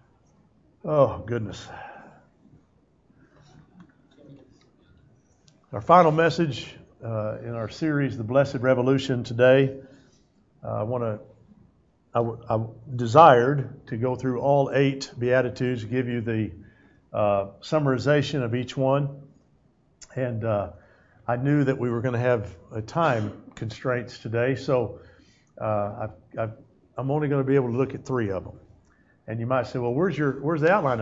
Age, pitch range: 50-69, 110-140 Hz